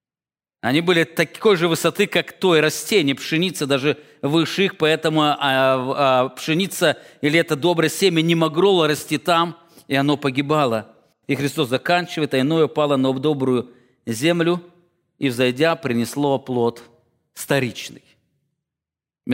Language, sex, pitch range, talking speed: English, male, 140-195 Hz, 120 wpm